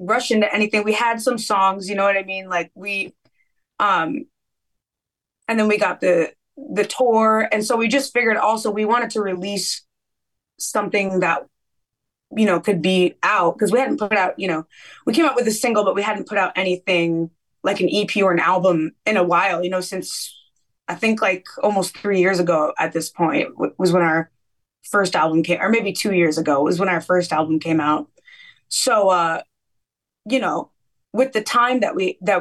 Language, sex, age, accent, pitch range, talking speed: English, female, 20-39, American, 180-215 Hz, 200 wpm